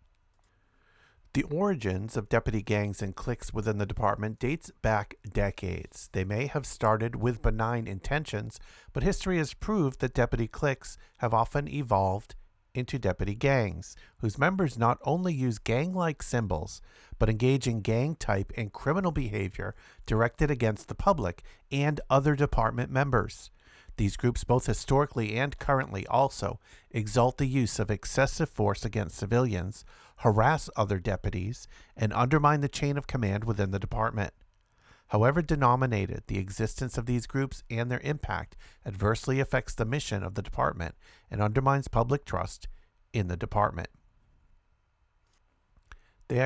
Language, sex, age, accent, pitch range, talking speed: English, male, 50-69, American, 100-135 Hz, 140 wpm